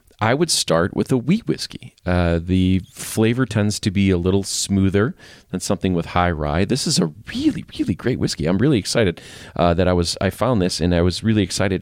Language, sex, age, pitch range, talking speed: English, male, 40-59, 85-105 Hz, 220 wpm